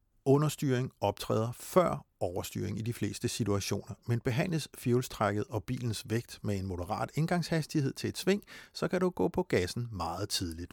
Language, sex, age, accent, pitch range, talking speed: Danish, male, 60-79, native, 100-135 Hz, 160 wpm